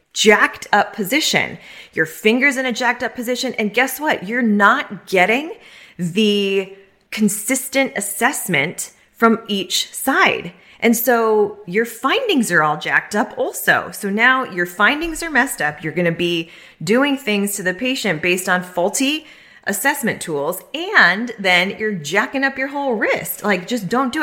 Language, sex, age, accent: English, female, 20-39, American